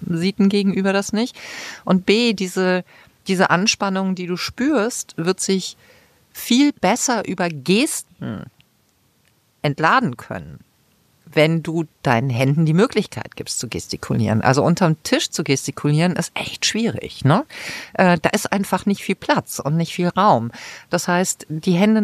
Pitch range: 170-210 Hz